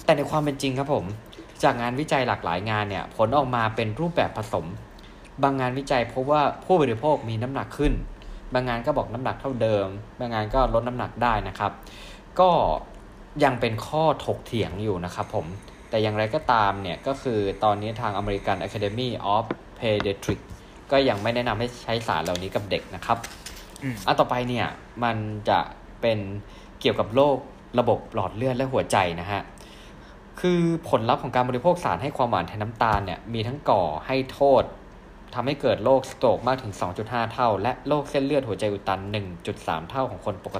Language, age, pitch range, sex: Thai, 20-39, 100-130 Hz, male